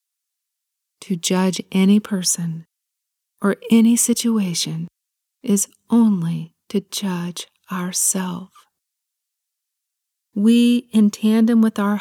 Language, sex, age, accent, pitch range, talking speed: English, female, 40-59, American, 185-225 Hz, 85 wpm